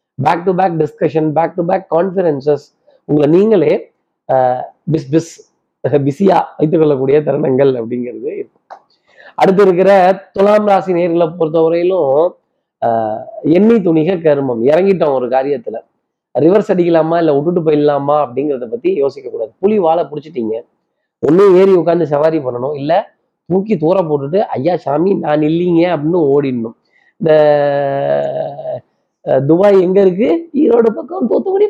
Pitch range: 150-190 Hz